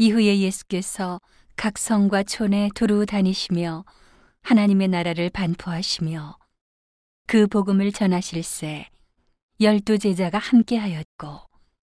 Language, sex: Korean, female